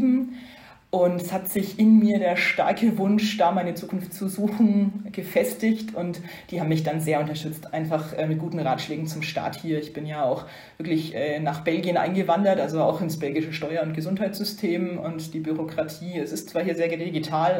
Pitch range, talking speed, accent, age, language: 155-195 Hz, 180 wpm, German, 30-49, English